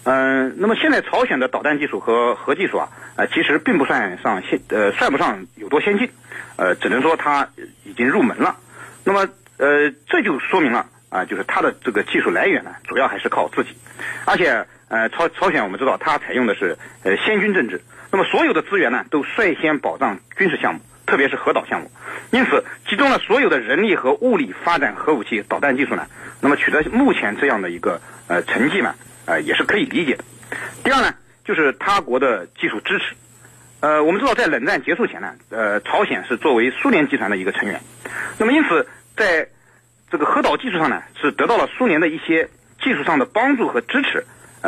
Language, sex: Chinese, male